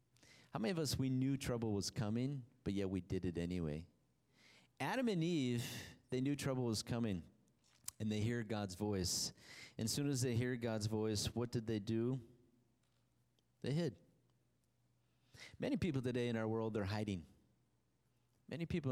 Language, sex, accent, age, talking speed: English, male, American, 30-49, 165 wpm